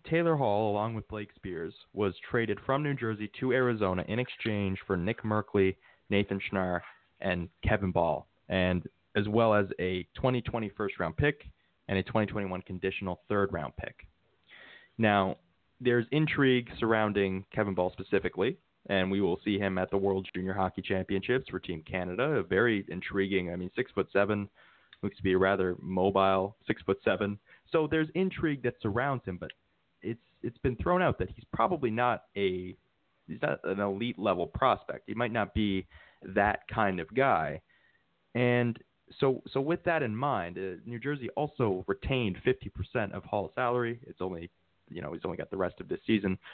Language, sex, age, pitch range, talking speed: English, male, 20-39, 95-120 Hz, 170 wpm